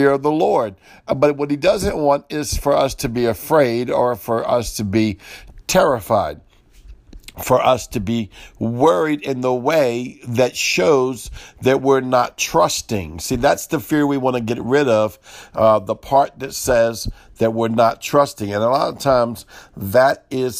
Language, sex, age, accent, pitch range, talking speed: English, male, 60-79, American, 120-140 Hz, 175 wpm